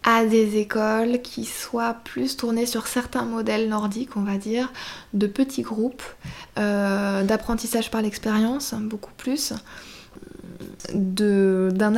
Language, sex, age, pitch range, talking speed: French, female, 20-39, 210-240 Hz, 120 wpm